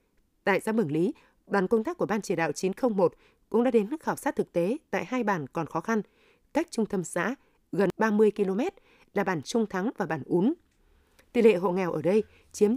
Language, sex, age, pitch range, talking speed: Vietnamese, female, 20-39, 180-235 Hz, 215 wpm